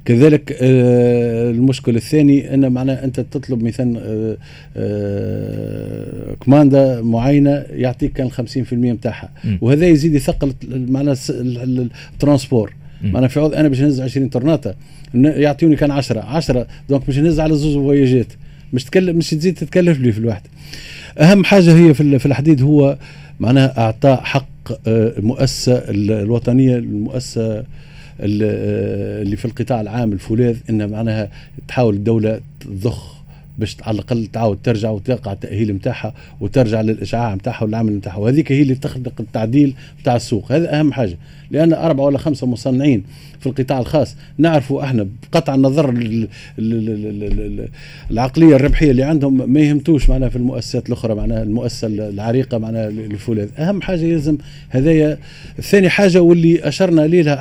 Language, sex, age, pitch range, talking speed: Arabic, male, 50-69, 115-145 Hz, 130 wpm